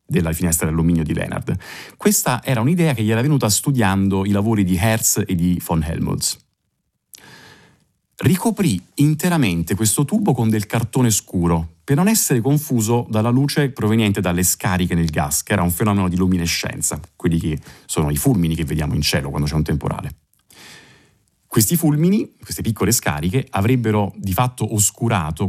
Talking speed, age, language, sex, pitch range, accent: 160 wpm, 30-49, Italian, male, 85-120 Hz, native